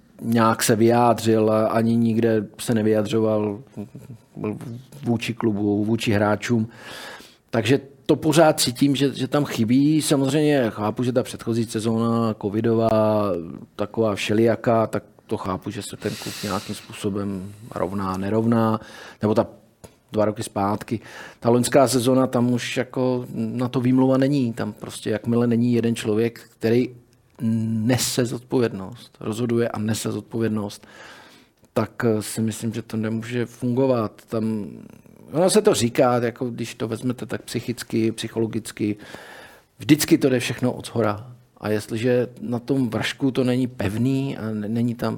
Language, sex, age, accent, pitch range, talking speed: Czech, male, 40-59, native, 110-125 Hz, 135 wpm